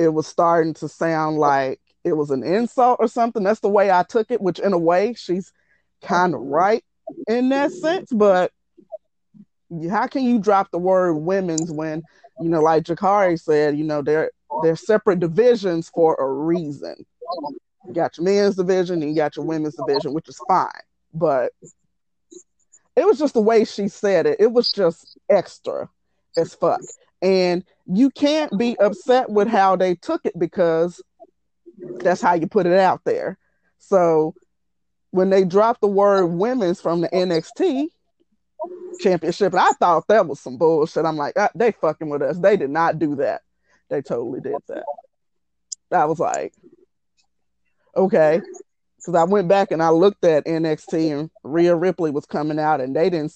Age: 30-49